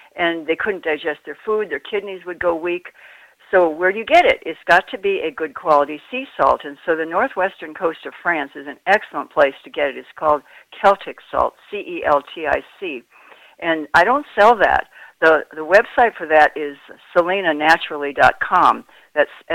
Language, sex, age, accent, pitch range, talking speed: English, female, 60-79, American, 150-205 Hz, 180 wpm